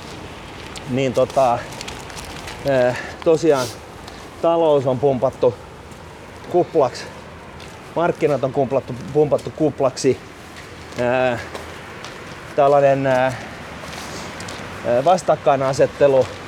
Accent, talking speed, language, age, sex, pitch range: native, 60 wpm, Finnish, 30-49, male, 100-150 Hz